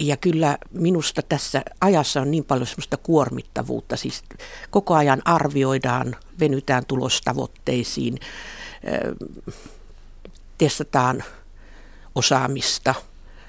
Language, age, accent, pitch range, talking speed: Finnish, 60-79, native, 125-170 Hz, 80 wpm